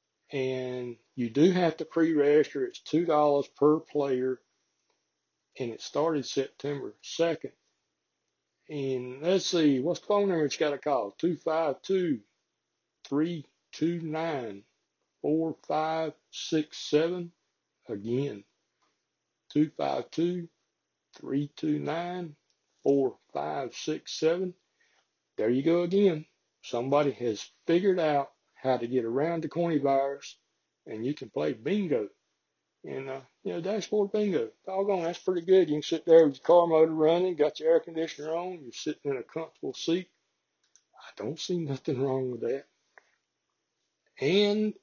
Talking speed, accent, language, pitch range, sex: 140 wpm, American, English, 140-175 Hz, male